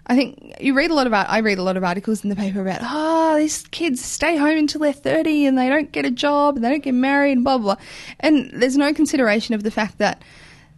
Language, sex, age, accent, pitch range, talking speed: English, female, 20-39, Australian, 200-270 Hz, 265 wpm